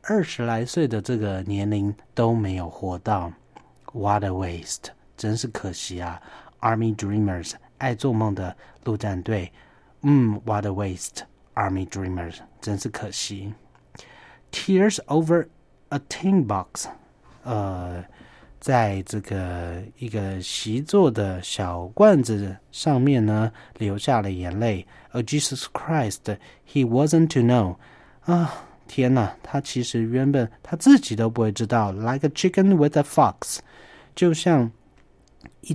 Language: Chinese